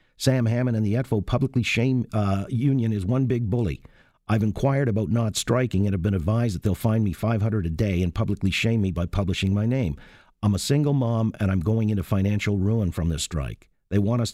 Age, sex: 50-69, male